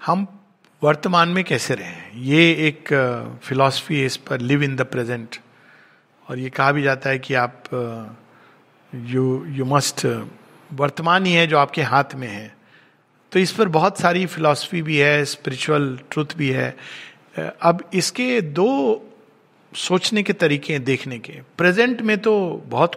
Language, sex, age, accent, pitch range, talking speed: Hindi, male, 50-69, native, 145-205 Hz, 155 wpm